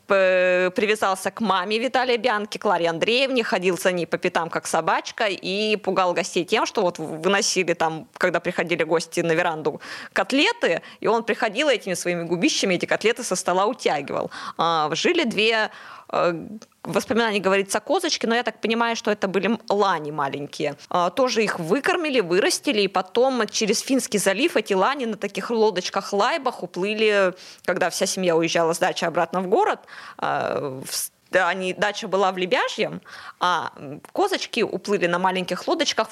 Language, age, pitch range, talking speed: Russian, 20-39, 180-225 Hz, 145 wpm